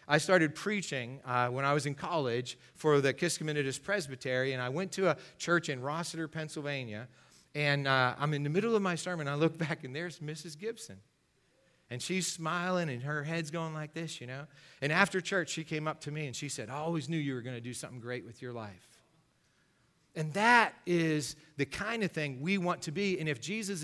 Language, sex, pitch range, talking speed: English, male, 135-175 Hz, 220 wpm